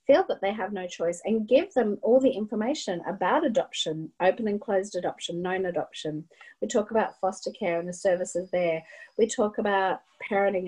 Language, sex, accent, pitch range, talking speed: English, female, Australian, 180-215 Hz, 185 wpm